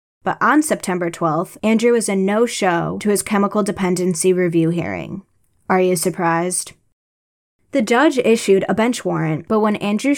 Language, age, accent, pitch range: English, 10-29, American, 175-210 Hz